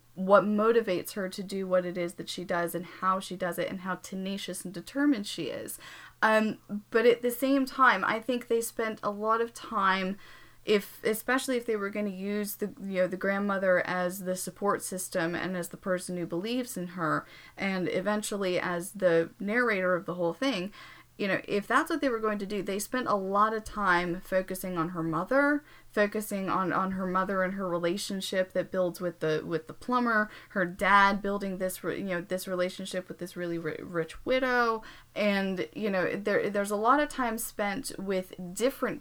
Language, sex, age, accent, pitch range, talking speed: English, female, 20-39, American, 180-215 Hz, 200 wpm